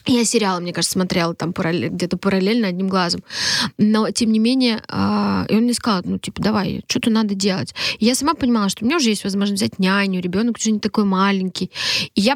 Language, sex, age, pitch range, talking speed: Russian, female, 20-39, 180-220 Hz, 220 wpm